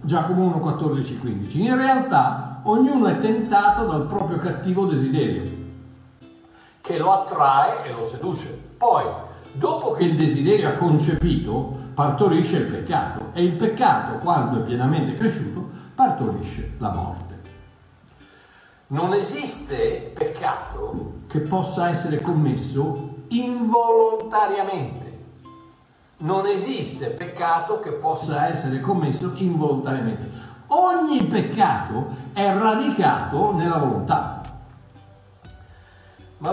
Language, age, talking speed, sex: Italian, 60-79, 100 wpm, male